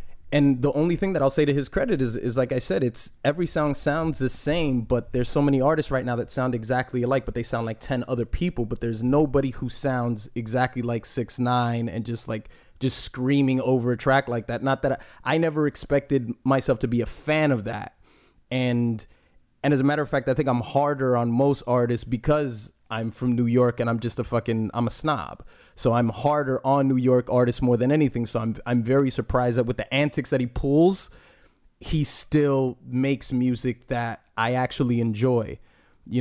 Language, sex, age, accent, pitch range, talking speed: English, male, 30-49, American, 120-140 Hz, 215 wpm